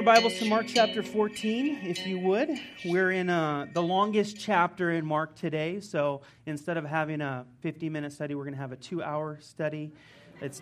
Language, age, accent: English, 30-49, American